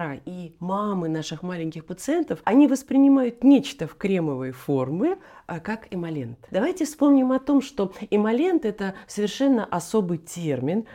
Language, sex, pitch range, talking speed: Russian, female, 160-220 Hz, 125 wpm